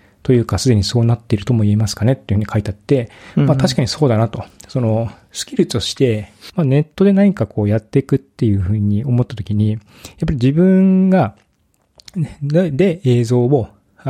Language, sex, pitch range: Japanese, male, 105-135 Hz